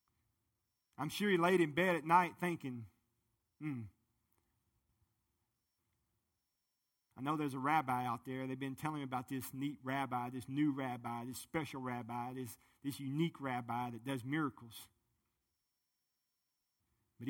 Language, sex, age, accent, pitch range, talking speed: English, male, 40-59, American, 110-140 Hz, 135 wpm